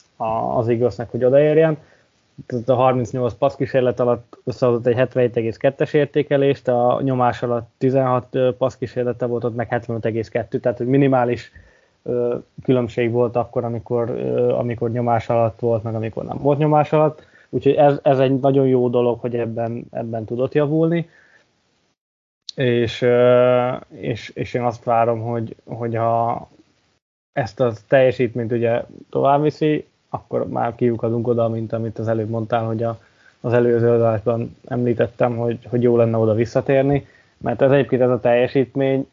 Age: 20-39